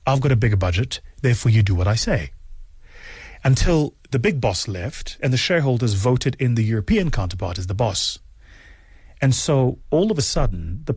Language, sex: English, male